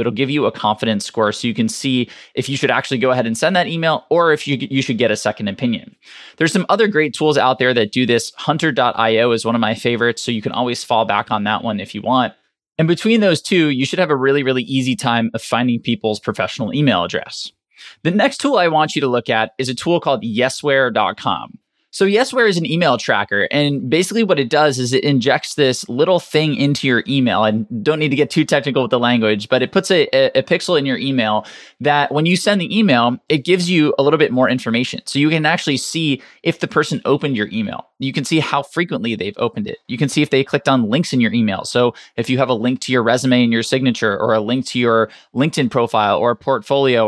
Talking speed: 250 wpm